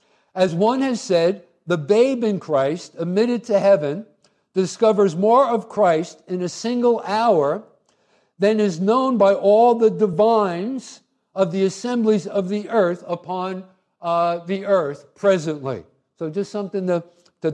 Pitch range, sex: 160-215 Hz, male